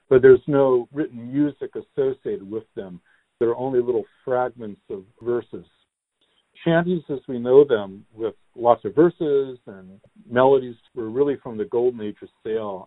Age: 50-69